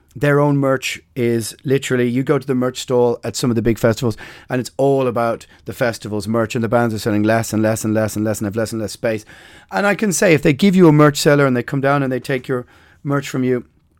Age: 30-49